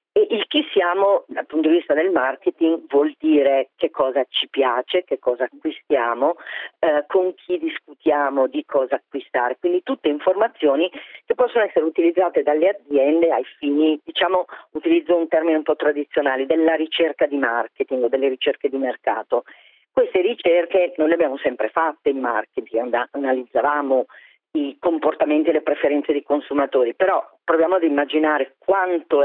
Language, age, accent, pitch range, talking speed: Italian, 40-59, native, 145-185 Hz, 150 wpm